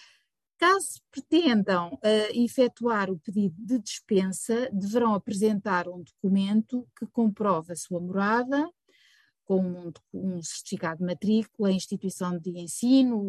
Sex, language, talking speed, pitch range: female, Portuguese, 115 wpm, 185-240 Hz